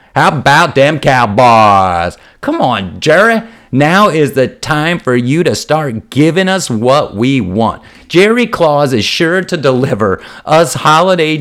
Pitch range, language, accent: 115-155 Hz, English, American